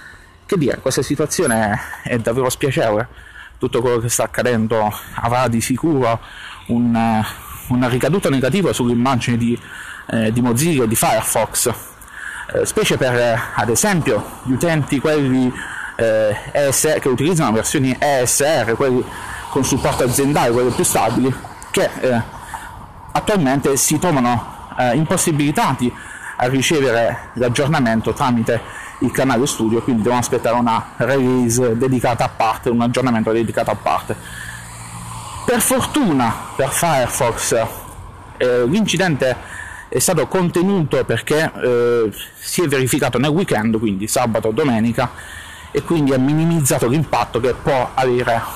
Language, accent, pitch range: Italian, native, 115-145 Hz